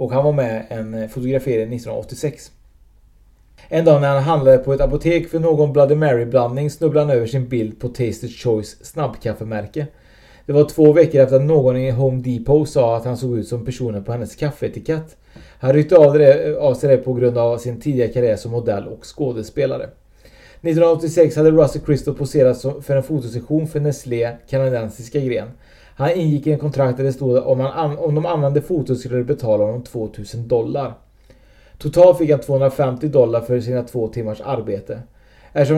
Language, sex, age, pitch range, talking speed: Swedish, male, 30-49, 120-150 Hz, 180 wpm